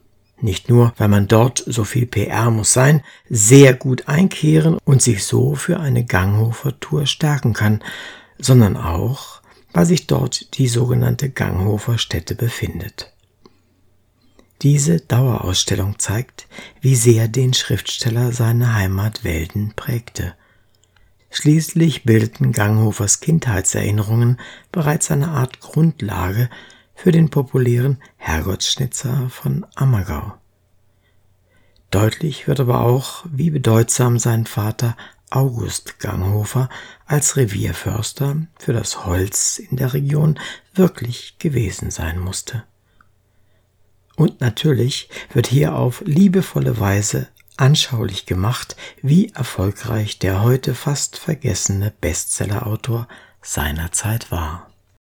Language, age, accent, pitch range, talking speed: German, 60-79, German, 100-135 Hz, 105 wpm